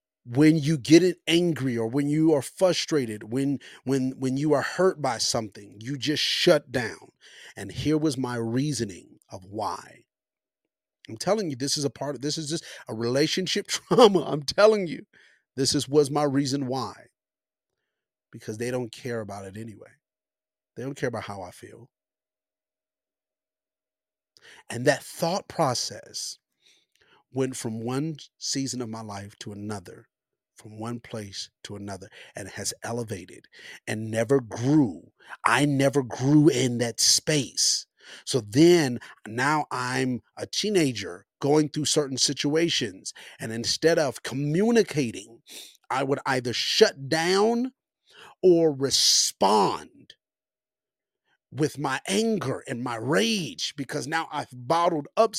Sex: male